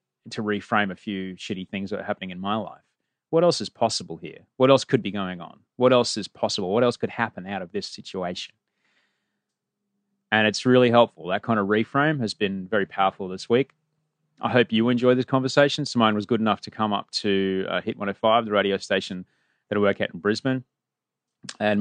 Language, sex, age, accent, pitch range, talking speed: English, male, 30-49, Australian, 105-160 Hz, 210 wpm